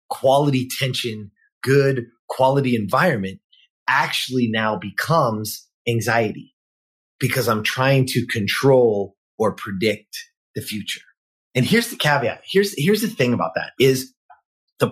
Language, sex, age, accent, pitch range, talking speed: English, male, 30-49, American, 130-185 Hz, 120 wpm